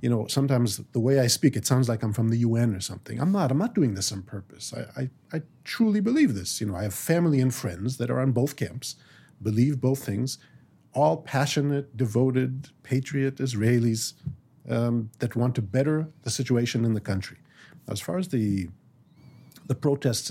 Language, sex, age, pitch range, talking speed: English, male, 40-59, 115-150 Hz, 195 wpm